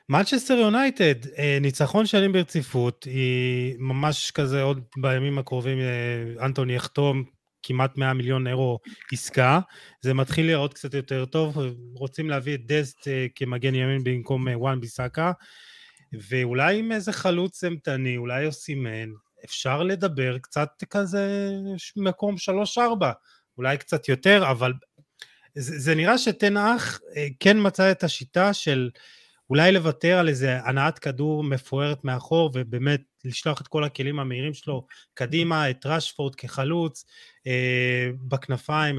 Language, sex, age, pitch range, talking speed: Hebrew, male, 30-49, 130-180 Hz, 125 wpm